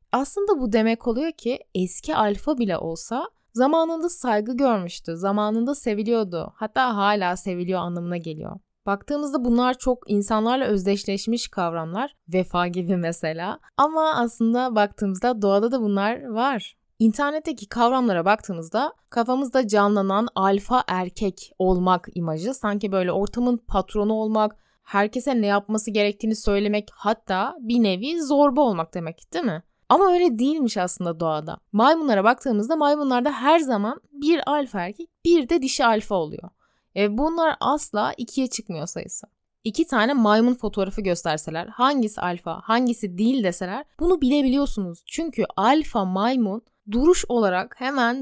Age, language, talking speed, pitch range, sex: 20-39, Turkish, 130 wpm, 195-255 Hz, female